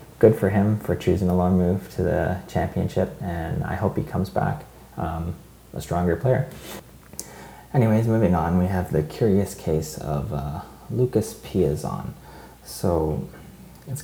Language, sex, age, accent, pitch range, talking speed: English, male, 30-49, American, 75-95 Hz, 150 wpm